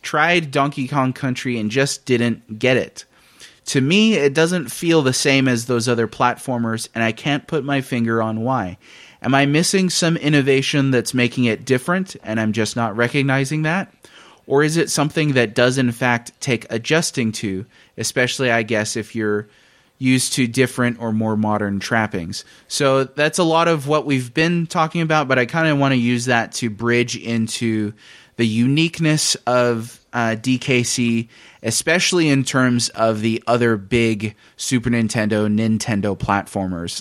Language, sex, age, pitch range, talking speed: English, male, 30-49, 110-135 Hz, 165 wpm